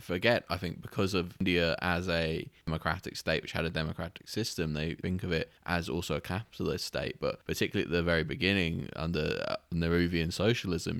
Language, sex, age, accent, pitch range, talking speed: English, male, 20-39, British, 80-95 Hz, 180 wpm